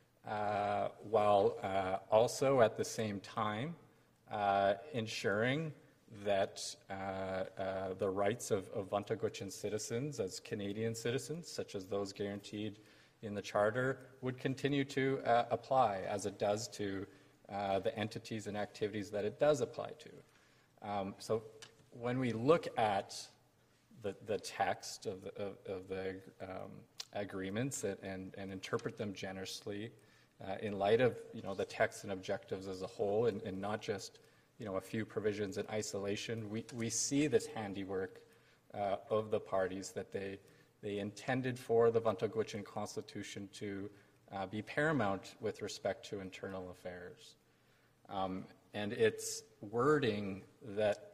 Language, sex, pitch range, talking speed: English, male, 100-115 Hz, 145 wpm